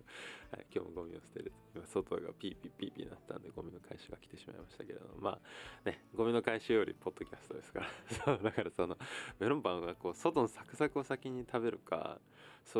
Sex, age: male, 20-39